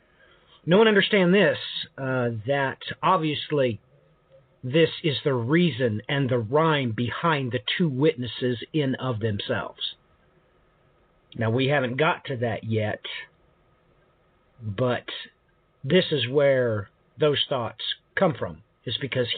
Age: 50-69